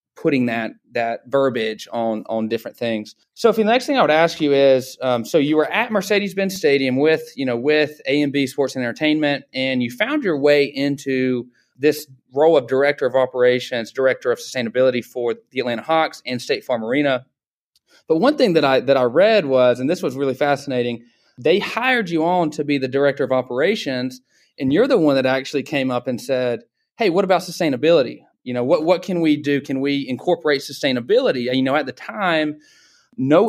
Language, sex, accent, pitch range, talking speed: English, male, American, 125-165 Hz, 200 wpm